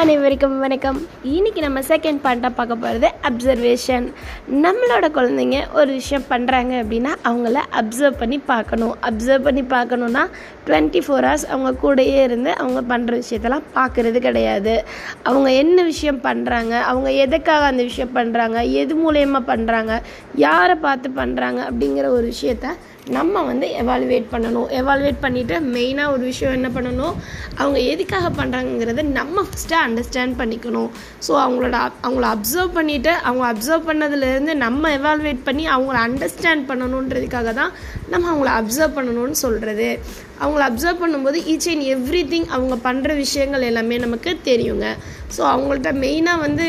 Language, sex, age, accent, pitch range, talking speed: Tamil, female, 20-39, native, 245-295 Hz, 130 wpm